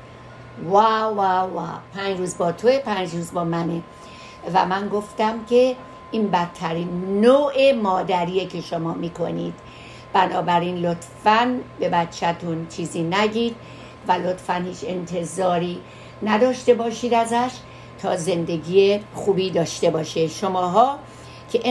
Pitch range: 175-225 Hz